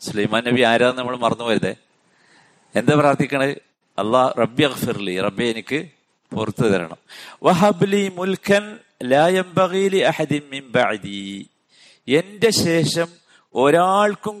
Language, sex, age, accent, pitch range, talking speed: Malayalam, male, 50-69, native, 115-180 Hz, 70 wpm